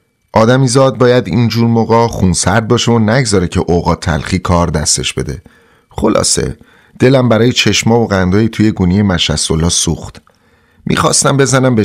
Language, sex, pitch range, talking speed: Persian, male, 95-125 Hz, 140 wpm